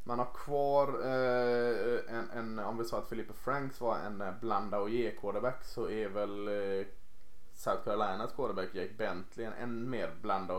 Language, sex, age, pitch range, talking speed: Swedish, male, 20-39, 105-130 Hz, 175 wpm